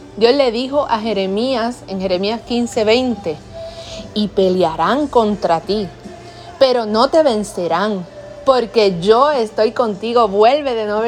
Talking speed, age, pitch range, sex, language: 130 wpm, 30-49, 200-255 Hz, female, English